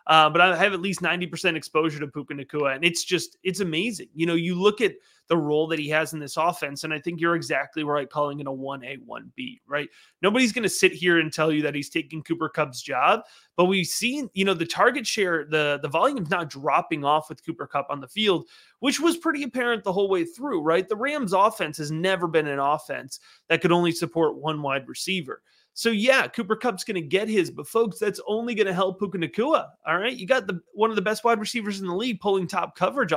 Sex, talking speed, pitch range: male, 240 wpm, 155-205 Hz